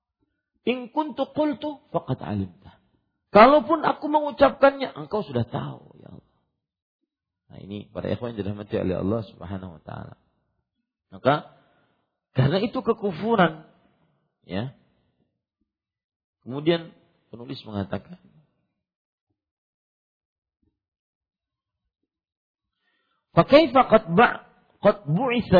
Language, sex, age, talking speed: Malay, male, 50-69, 80 wpm